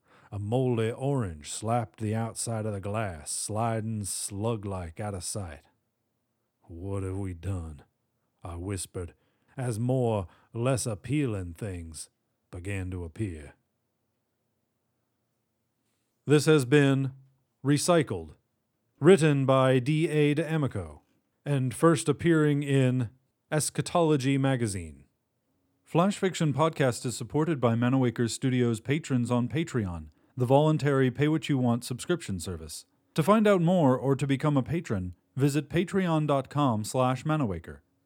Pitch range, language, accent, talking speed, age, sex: 110-145 Hz, English, American, 110 wpm, 40-59, male